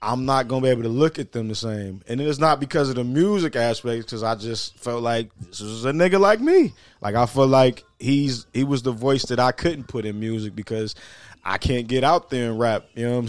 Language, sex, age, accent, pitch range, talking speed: English, male, 20-39, American, 115-140 Hz, 260 wpm